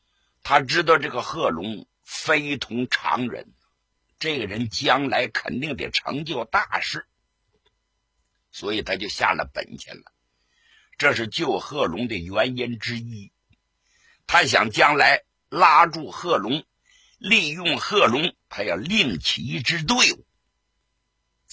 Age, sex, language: 60-79, male, Chinese